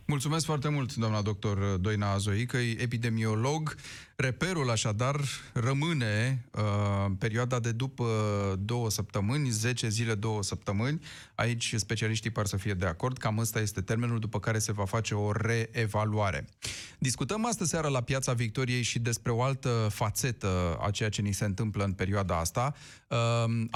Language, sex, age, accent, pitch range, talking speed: Romanian, male, 30-49, native, 105-130 Hz, 155 wpm